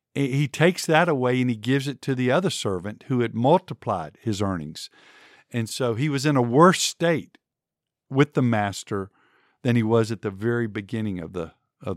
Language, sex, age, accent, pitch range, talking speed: English, male, 50-69, American, 110-145 Hz, 190 wpm